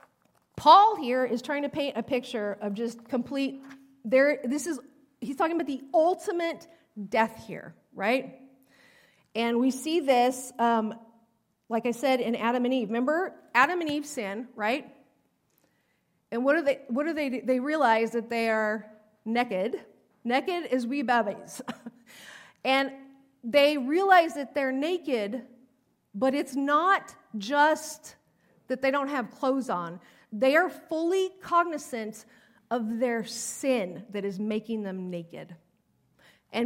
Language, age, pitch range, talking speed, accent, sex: English, 40-59, 230-290 Hz, 140 wpm, American, female